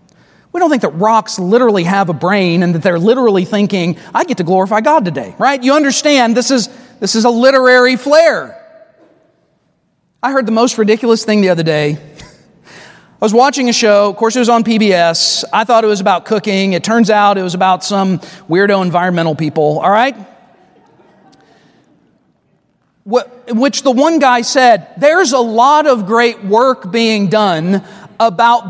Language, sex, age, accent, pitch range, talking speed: English, male, 40-59, American, 200-265 Hz, 175 wpm